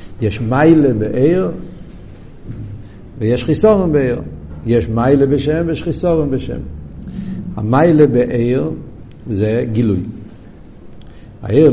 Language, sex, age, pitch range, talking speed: Hebrew, male, 70-89, 120-160 Hz, 85 wpm